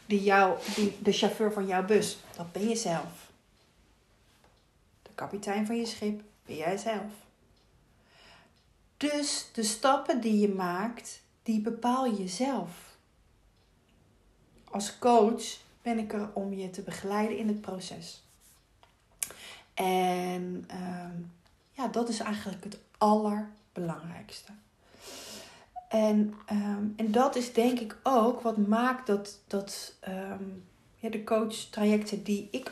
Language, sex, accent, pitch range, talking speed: Dutch, female, Dutch, 190-225 Hz, 125 wpm